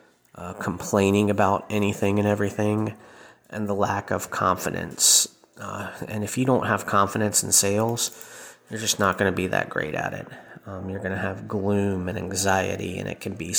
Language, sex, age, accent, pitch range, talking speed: English, male, 30-49, American, 95-105 Hz, 185 wpm